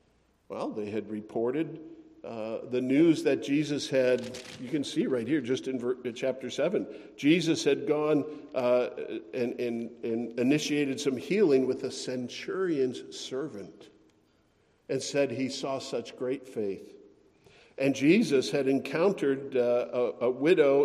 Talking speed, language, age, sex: 140 wpm, English, 50-69, male